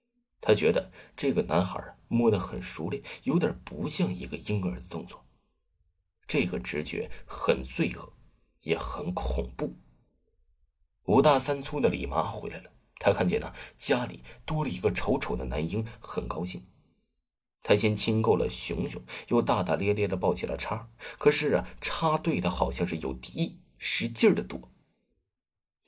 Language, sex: Chinese, male